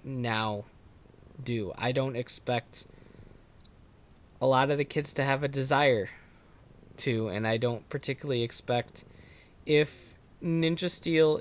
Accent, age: American, 20-39